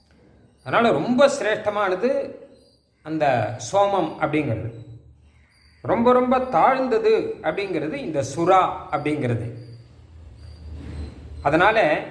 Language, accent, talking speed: Tamil, native, 70 wpm